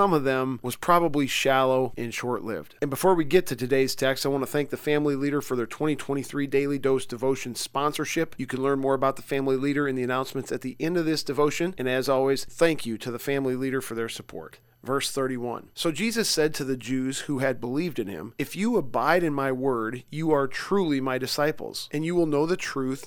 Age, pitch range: 40-59, 130-155 Hz